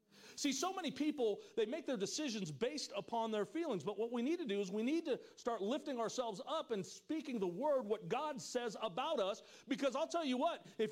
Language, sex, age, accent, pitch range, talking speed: English, male, 50-69, American, 205-270 Hz, 225 wpm